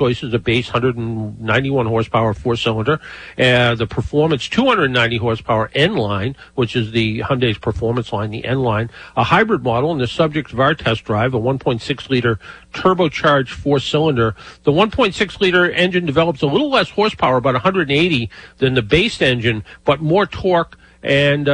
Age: 50-69